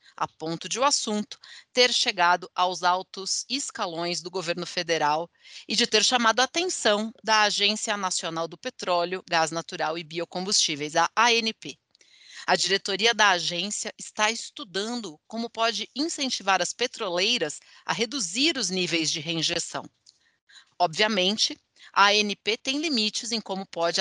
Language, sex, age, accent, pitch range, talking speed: English, female, 40-59, Brazilian, 180-240 Hz, 135 wpm